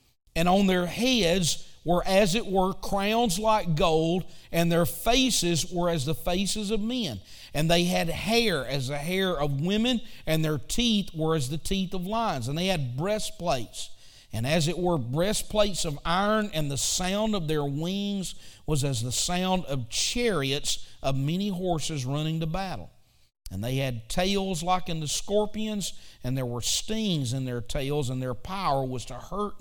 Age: 50-69